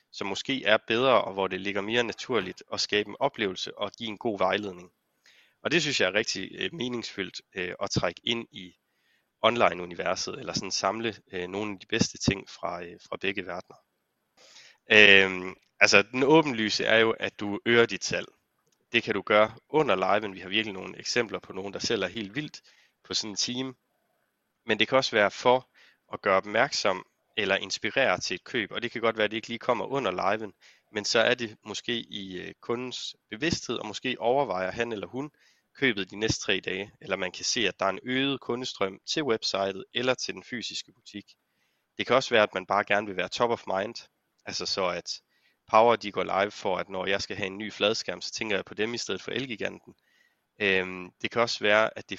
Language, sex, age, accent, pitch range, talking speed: Danish, male, 30-49, native, 95-120 Hz, 210 wpm